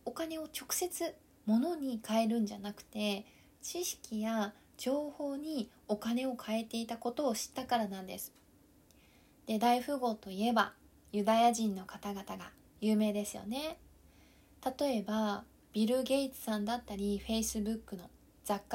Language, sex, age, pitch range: Japanese, female, 20-39, 215-275 Hz